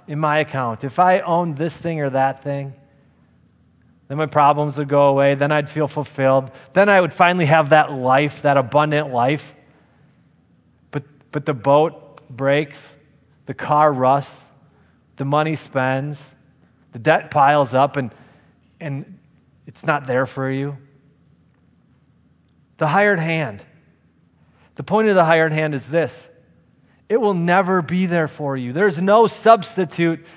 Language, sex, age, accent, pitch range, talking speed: English, male, 30-49, American, 145-195 Hz, 145 wpm